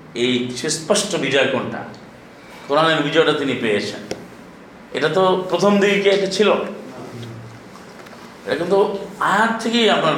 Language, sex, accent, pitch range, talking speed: Bengali, male, native, 145-190 Hz, 120 wpm